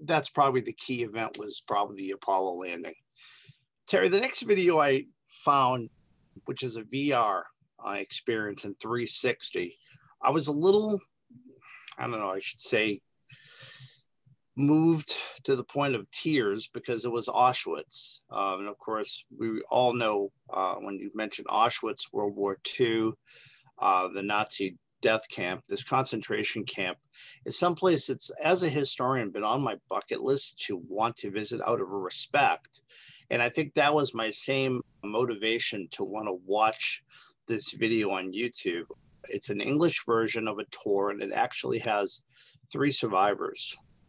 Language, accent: English, American